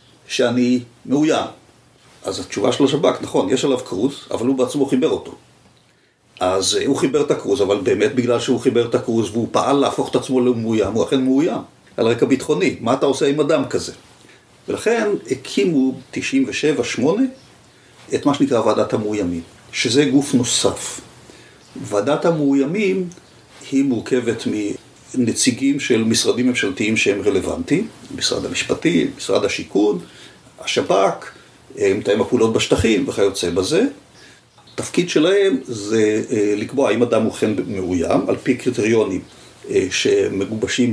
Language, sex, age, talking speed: Hebrew, male, 50-69, 135 wpm